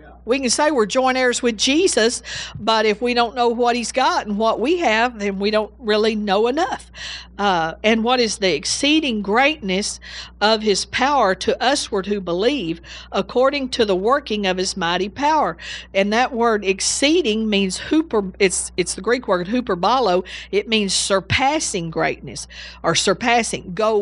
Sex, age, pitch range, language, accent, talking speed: female, 50-69, 195-245 Hz, English, American, 165 wpm